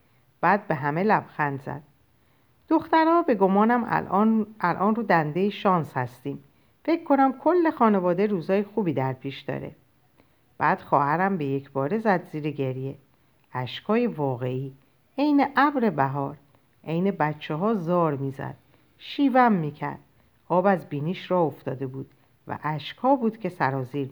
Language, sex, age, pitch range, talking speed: Persian, female, 50-69, 140-195 Hz, 135 wpm